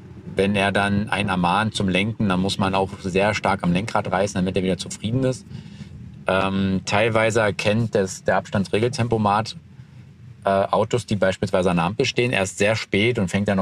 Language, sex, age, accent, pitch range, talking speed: German, male, 40-59, German, 95-115 Hz, 180 wpm